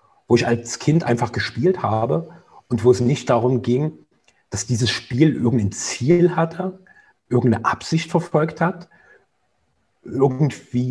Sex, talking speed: male, 130 wpm